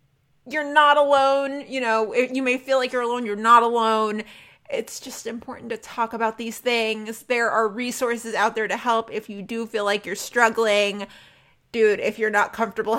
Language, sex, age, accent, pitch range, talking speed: English, female, 30-49, American, 210-265 Hz, 190 wpm